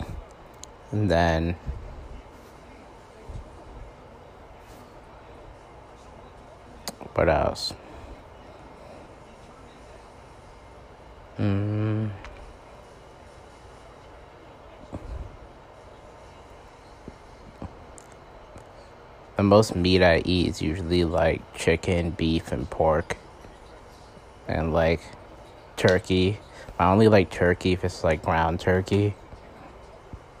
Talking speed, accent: 55 wpm, American